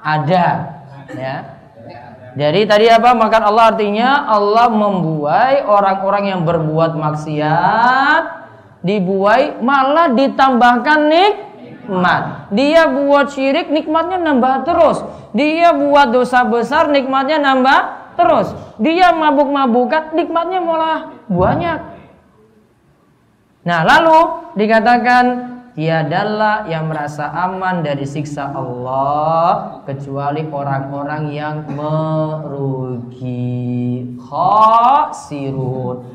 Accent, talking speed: native, 85 wpm